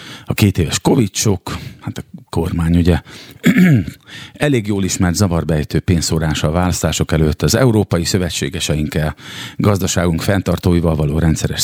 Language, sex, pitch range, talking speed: Hungarian, male, 80-100 Hz, 120 wpm